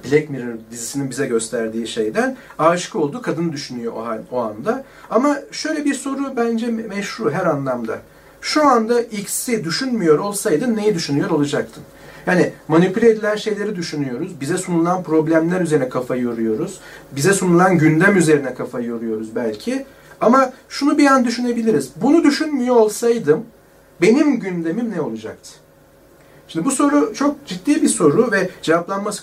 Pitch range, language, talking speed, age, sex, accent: 160-230 Hz, Turkish, 145 wpm, 40-59, male, native